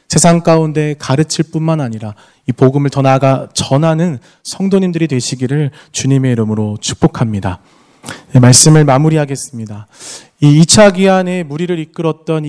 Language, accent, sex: Korean, native, male